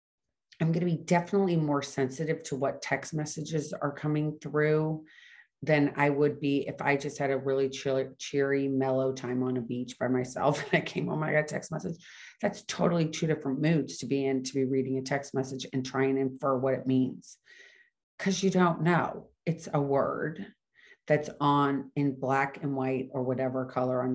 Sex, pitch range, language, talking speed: female, 135-165 Hz, English, 200 wpm